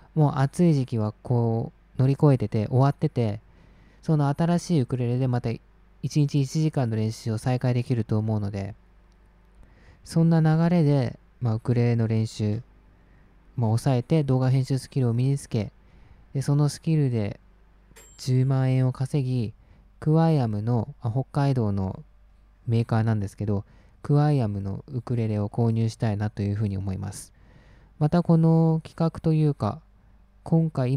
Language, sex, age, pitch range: Japanese, male, 20-39, 105-140 Hz